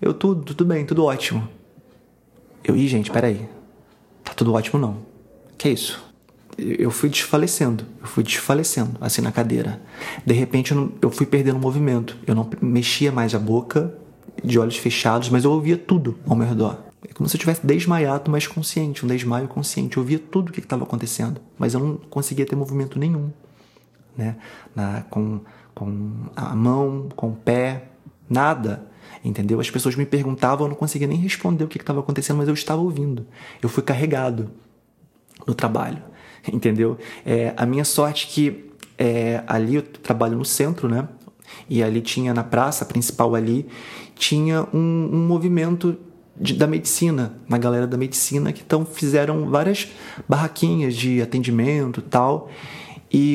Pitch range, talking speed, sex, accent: 120-155 Hz, 170 wpm, male, Brazilian